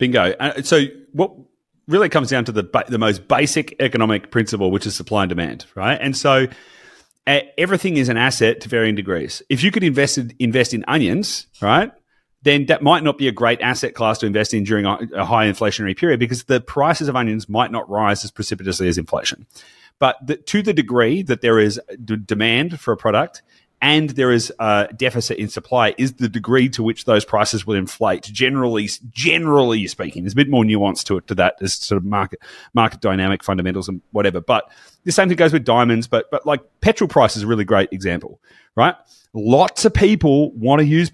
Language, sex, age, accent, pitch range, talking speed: English, male, 30-49, Australian, 110-150 Hz, 210 wpm